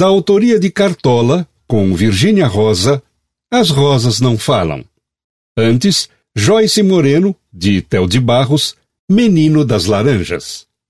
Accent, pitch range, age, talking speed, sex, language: Brazilian, 105-165 Hz, 60-79, 110 wpm, male, Portuguese